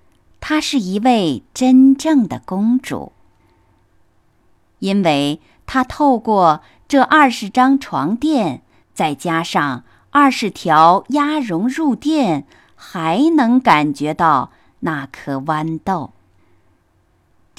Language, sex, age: Chinese, female, 50-69